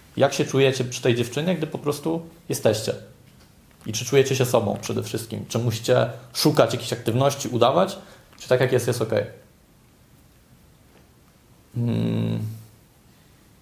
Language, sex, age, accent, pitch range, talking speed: Polish, male, 20-39, native, 110-130 Hz, 130 wpm